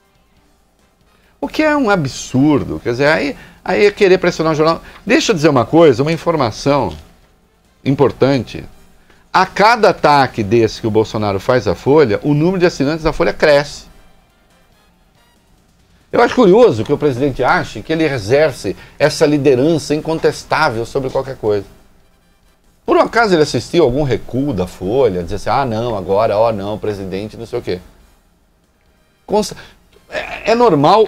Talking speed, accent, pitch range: 155 wpm, Brazilian, 115-170 Hz